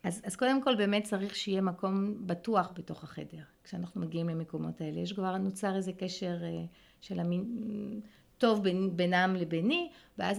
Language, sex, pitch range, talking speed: Hebrew, female, 175-215 Hz, 160 wpm